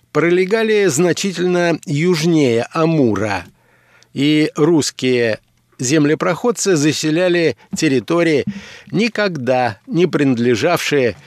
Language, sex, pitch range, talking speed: Russian, male, 130-180 Hz, 65 wpm